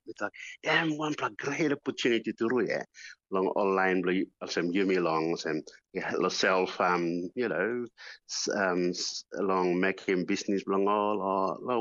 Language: English